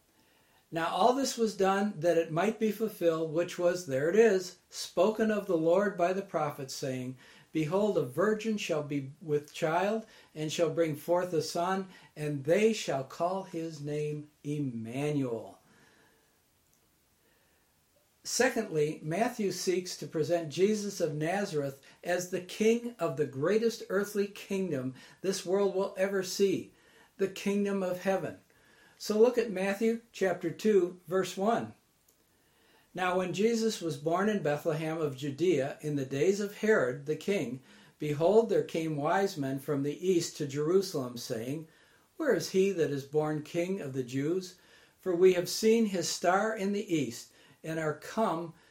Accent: American